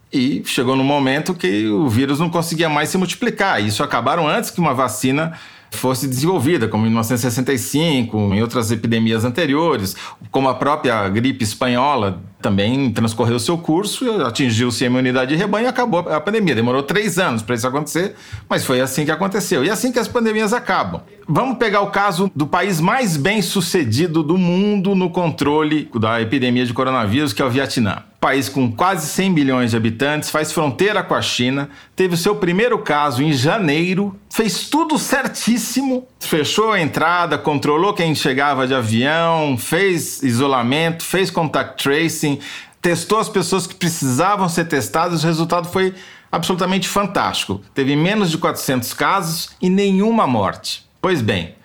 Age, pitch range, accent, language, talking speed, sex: 40-59, 130-190 Hz, Brazilian, Portuguese, 165 wpm, male